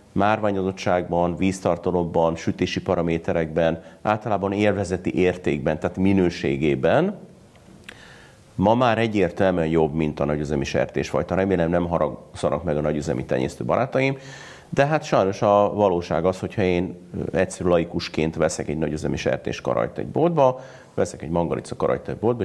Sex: male